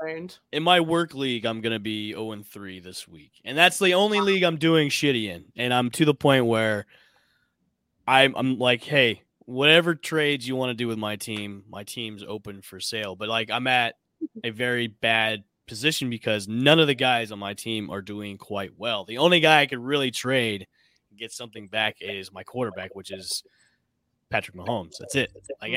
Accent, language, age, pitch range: American, English, 20-39, 105-130 Hz